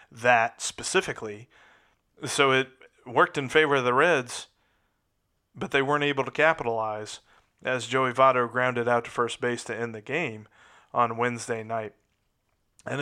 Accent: American